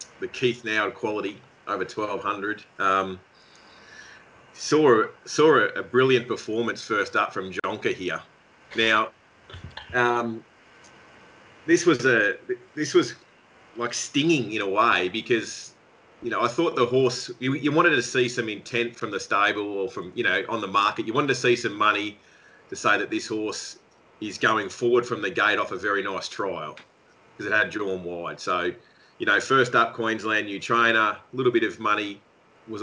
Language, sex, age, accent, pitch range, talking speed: English, male, 30-49, Australian, 105-125 Hz, 175 wpm